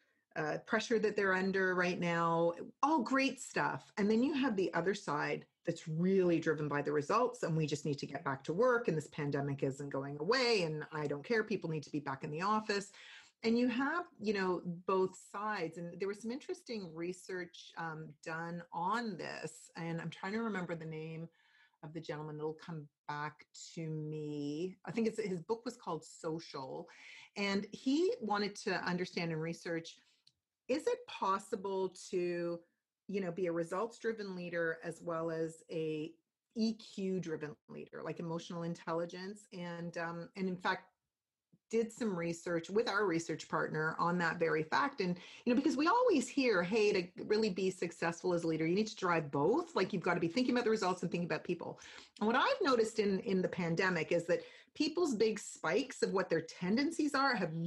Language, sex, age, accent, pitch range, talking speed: English, female, 40-59, American, 165-215 Hz, 195 wpm